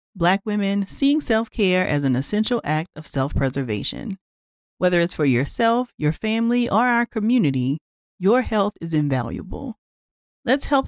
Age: 40-59